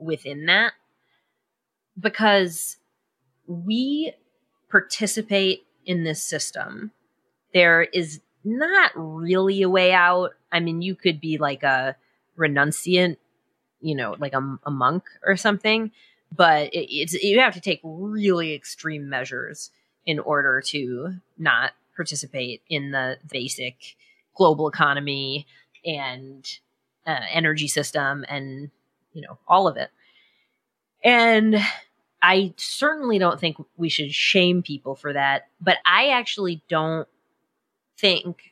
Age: 30-49